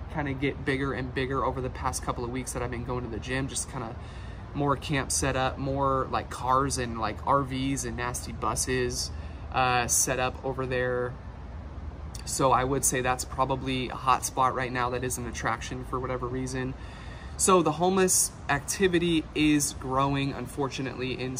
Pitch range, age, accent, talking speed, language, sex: 125-135 Hz, 20-39, American, 185 wpm, English, male